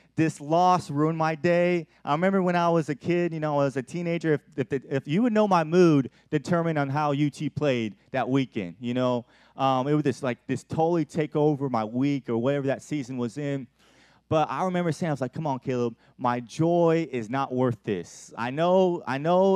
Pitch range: 140-170 Hz